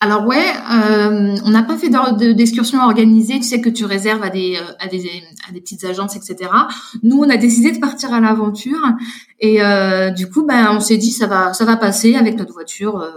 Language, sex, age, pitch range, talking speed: French, female, 20-39, 190-235 Hz, 225 wpm